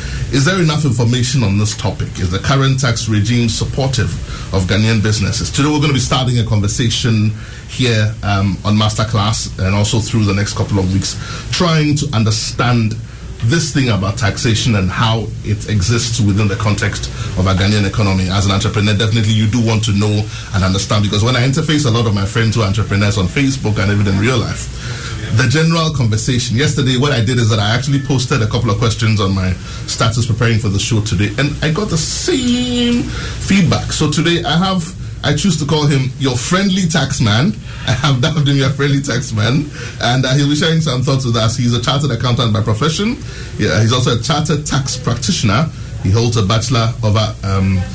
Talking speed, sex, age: 205 wpm, male, 30-49